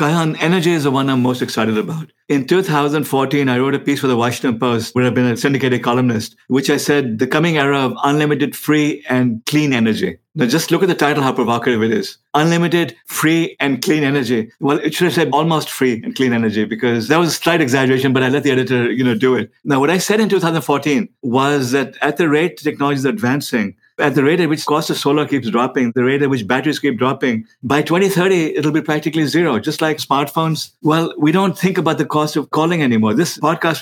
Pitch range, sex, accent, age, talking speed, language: 130-160 Hz, male, Indian, 60-79, 230 wpm, English